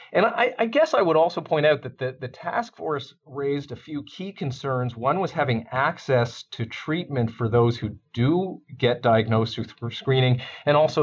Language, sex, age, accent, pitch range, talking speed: English, male, 40-59, American, 115-140 Hz, 190 wpm